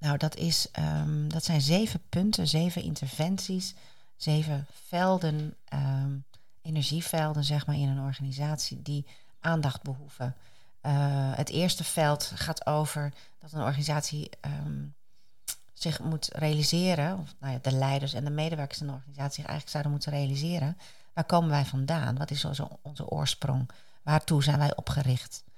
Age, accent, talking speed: 40-59, Dutch, 150 wpm